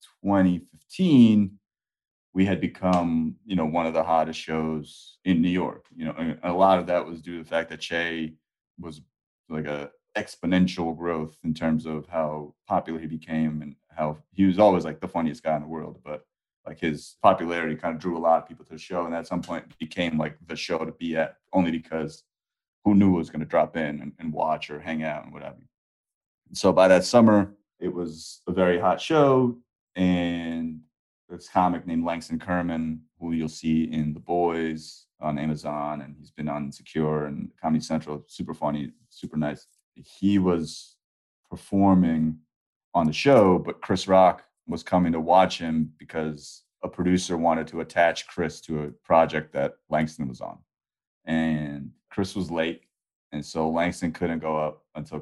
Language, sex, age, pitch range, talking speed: English, male, 30-49, 80-90 Hz, 185 wpm